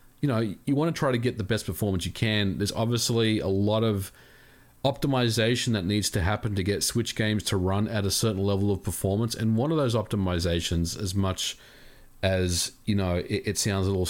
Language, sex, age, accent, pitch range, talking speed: English, male, 40-59, Australian, 100-125 Hz, 215 wpm